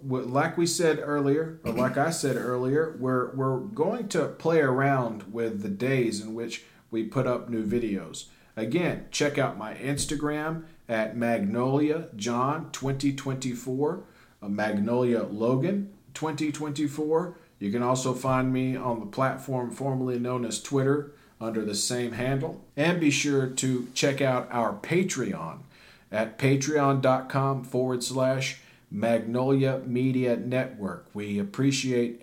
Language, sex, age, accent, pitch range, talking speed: English, male, 40-59, American, 120-140 Hz, 125 wpm